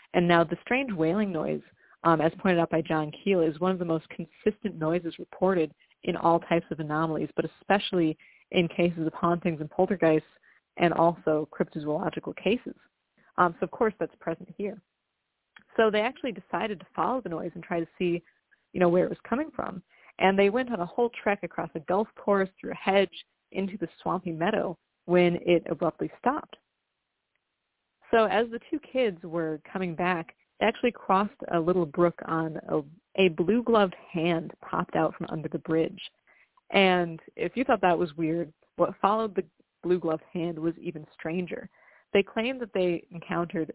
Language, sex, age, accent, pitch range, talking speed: English, female, 30-49, American, 165-200 Hz, 180 wpm